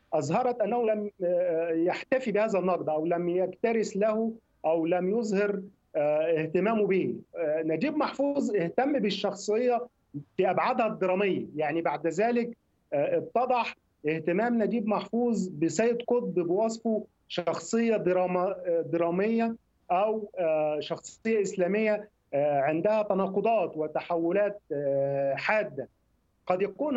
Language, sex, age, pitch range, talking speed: Arabic, male, 40-59, 170-225 Hz, 95 wpm